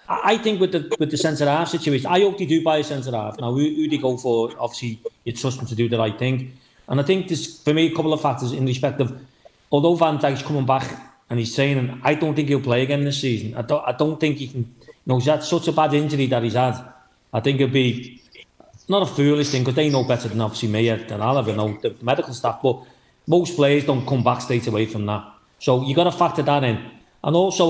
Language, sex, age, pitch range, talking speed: English, male, 40-59, 130-160 Hz, 265 wpm